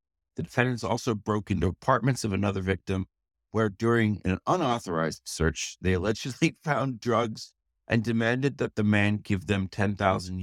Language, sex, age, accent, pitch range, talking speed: English, male, 60-79, American, 90-115 Hz, 150 wpm